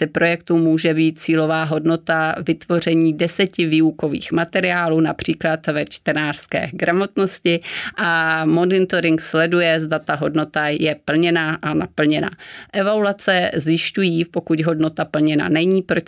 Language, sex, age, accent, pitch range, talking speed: Czech, female, 30-49, native, 155-170 Hz, 110 wpm